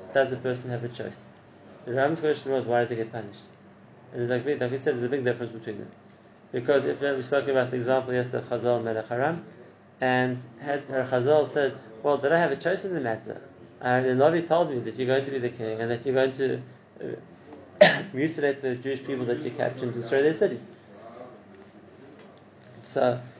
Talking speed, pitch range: 210 wpm, 120-140 Hz